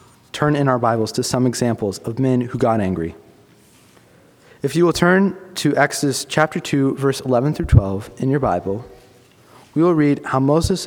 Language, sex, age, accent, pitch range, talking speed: English, male, 30-49, American, 115-160 Hz, 175 wpm